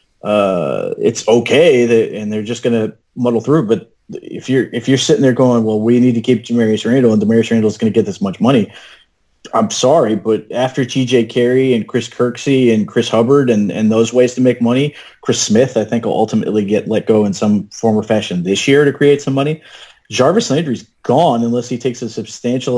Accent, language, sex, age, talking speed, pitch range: American, English, male, 30-49, 215 wpm, 115-135 Hz